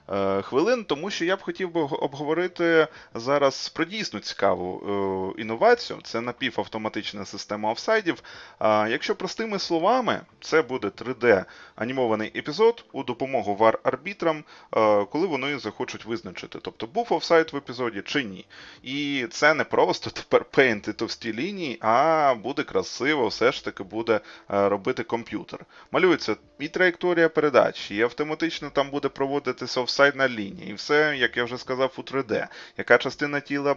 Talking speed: 140 wpm